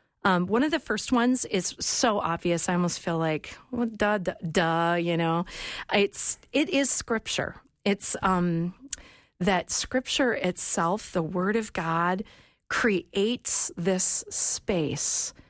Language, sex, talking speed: English, female, 135 wpm